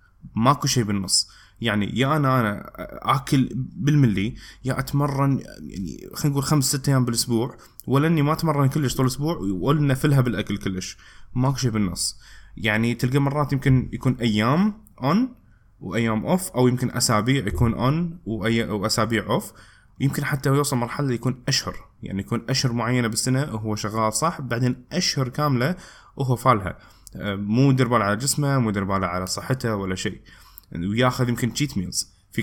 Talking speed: 155 wpm